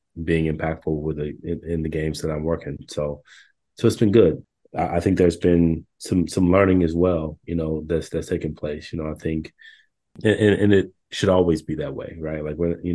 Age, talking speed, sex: 30-49, 220 wpm, male